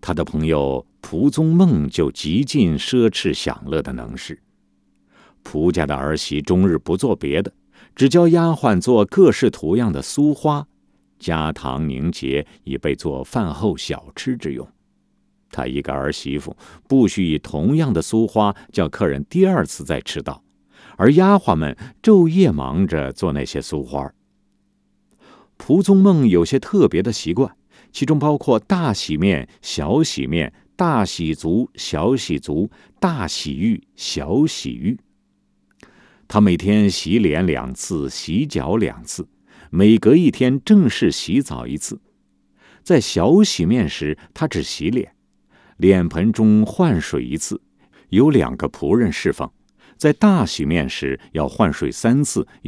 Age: 50-69